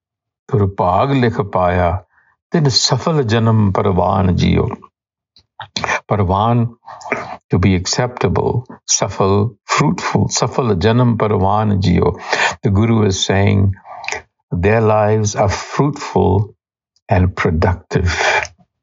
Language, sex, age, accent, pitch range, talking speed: English, male, 60-79, Indian, 95-110 Hz, 60 wpm